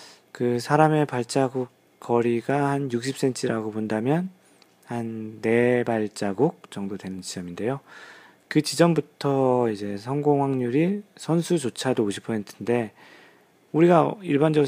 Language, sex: Korean, male